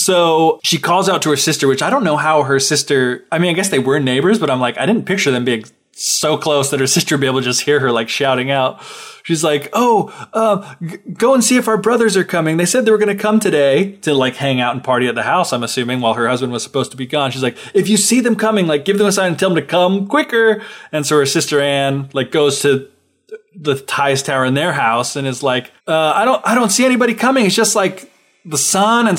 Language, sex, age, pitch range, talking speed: English, male, 20-39, 140-225 Hz, 270 wpm